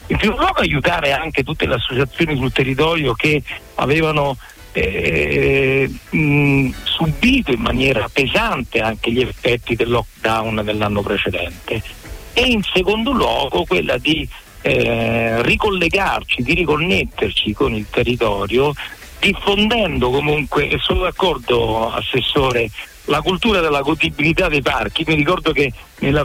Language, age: Italian, 60-79